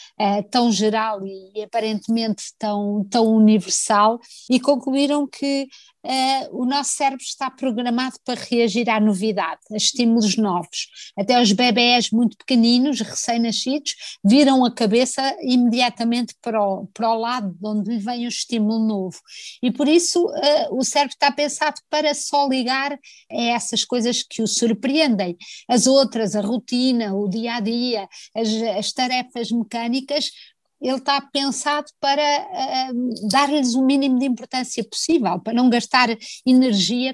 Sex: female